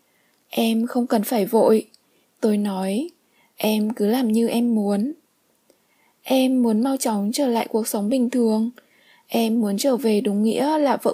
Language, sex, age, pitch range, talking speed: Vietnamese, female, 10-29, 225-265 Hz, 165 wpm